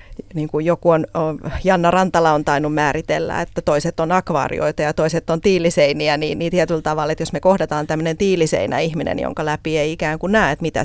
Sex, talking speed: female, 200 wpm